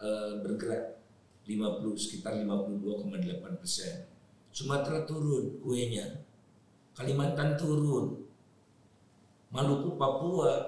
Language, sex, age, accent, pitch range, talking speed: Indonesian, male, 50-69, native, 125-170 Hz, 60 wpm